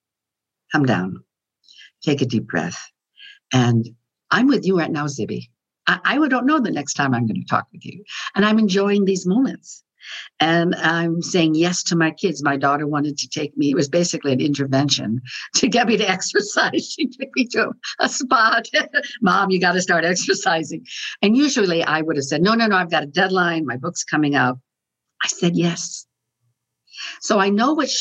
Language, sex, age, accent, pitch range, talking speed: English, female, 60-79, American, 135-195 Hz, 195 wpm